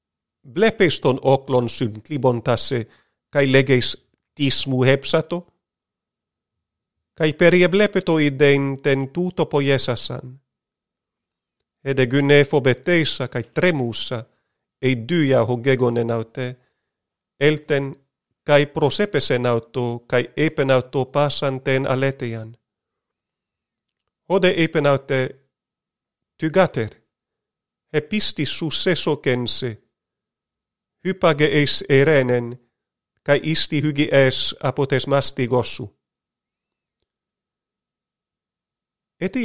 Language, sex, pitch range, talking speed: Greek, male, 125-150 Hz, 70 wpm